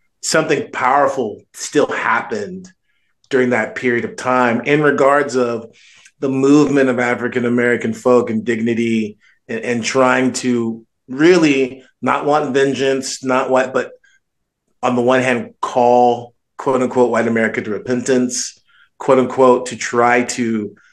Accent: American